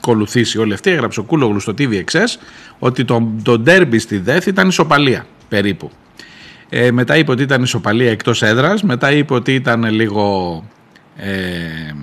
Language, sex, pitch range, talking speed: Greek, male, 110-140 Hz, 155 wpm